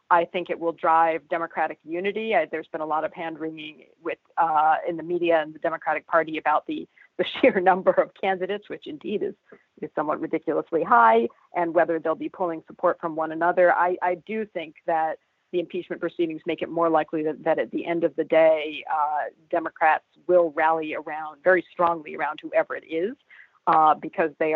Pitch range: 160-195 Hz